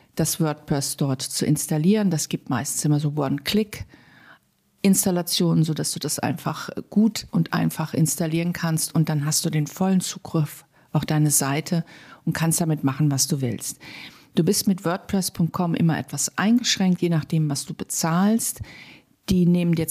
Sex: female